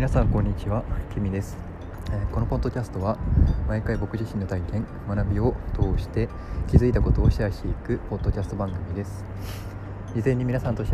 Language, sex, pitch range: Japanese, male, 85-110 Hz